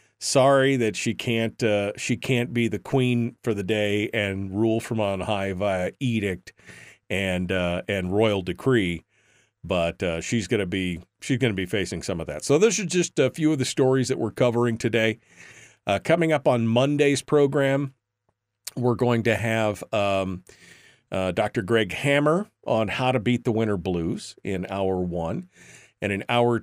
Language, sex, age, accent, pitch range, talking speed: English, male, 40-59, American, 100-130 Hz, 175 wpm